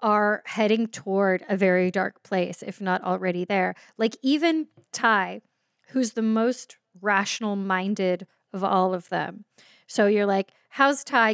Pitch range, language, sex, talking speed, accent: 185-220 Hz, English, female, 145 wpm, American